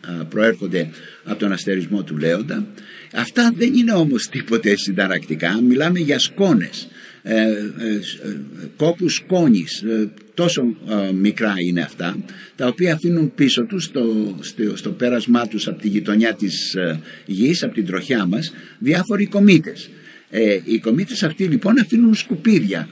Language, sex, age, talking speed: Greek, male, 60-79, 135 wpm